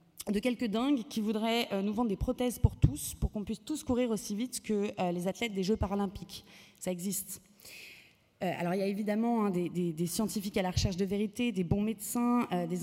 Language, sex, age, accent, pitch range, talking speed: French, female, 20-39, French, 185-235 Hz, 205 wpm